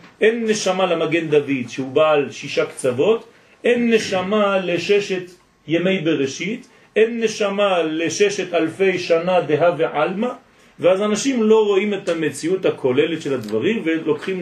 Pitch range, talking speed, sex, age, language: 155-215 Hz, 125 wpm, male, 40-59, French